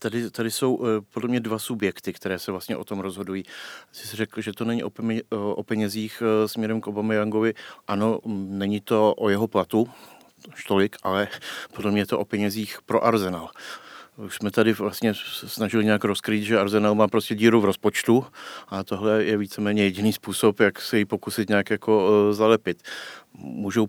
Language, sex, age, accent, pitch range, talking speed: Czech, male, 40-59, native, 105-115 Hz, 170 wpm